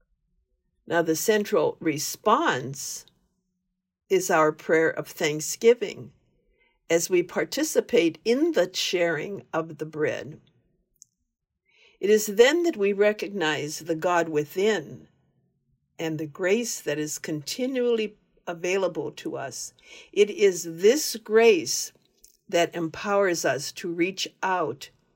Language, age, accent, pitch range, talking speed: English, 60-79, American, 160-220 Hz, 110 wpm